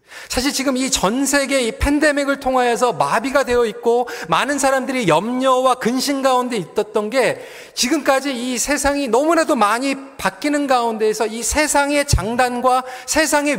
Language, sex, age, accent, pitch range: Korean, male, 40-59, native, 220-275 Hz